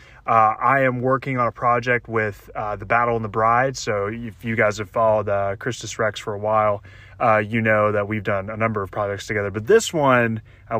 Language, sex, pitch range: English, male, 105-125 Hz